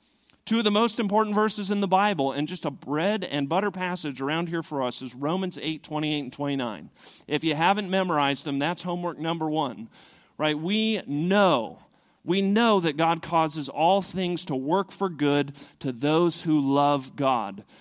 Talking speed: 180 wpm